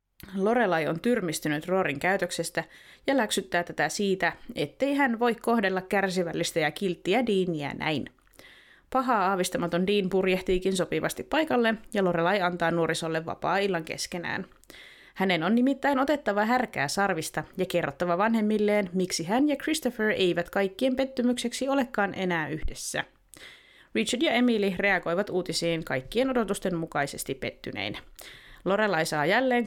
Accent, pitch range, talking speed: native, 170-225 Hz, 125 wpm